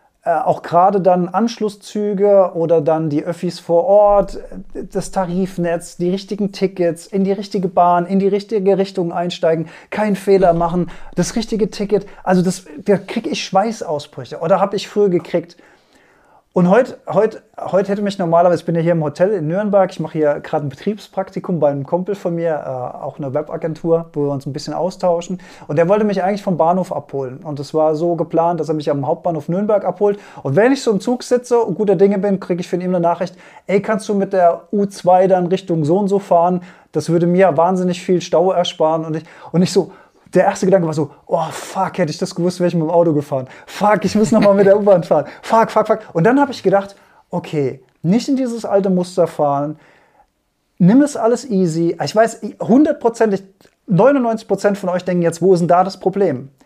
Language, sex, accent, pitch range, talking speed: German, male, German, 170-200 Hz, 210 wpm